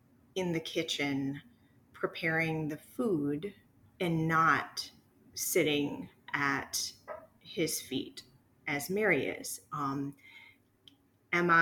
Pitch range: 145-170 Hz